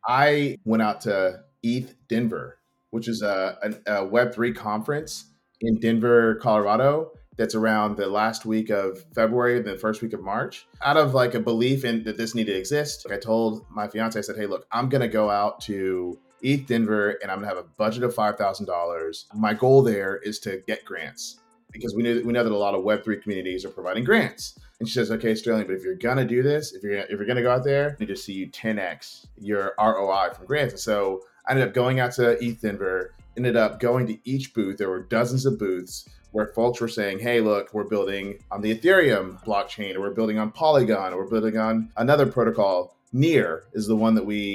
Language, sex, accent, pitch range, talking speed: English, male, American, 105-125 Hz, 220 wpm